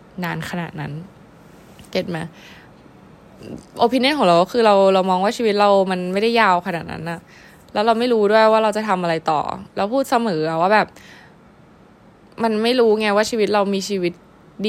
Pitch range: 175-220 Hz